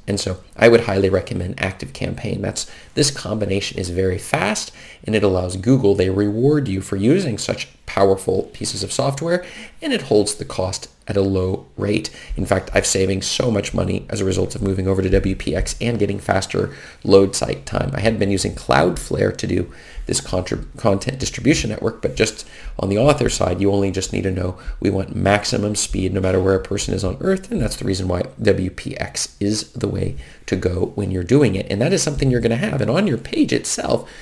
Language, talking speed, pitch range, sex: English, 215 wpm, 95-115 Hz, male